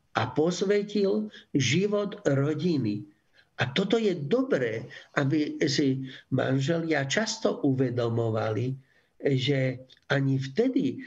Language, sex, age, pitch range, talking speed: Slovak, male, 60-79, 130-170 Hz, 85 wpm